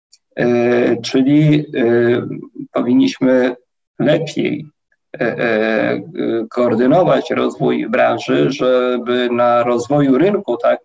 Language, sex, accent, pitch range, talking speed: Polish, male, native, 115-150 Hz, 85 wpm